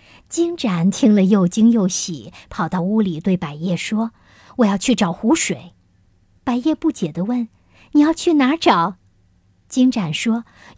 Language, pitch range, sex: Chinese, 170-240 Hz, male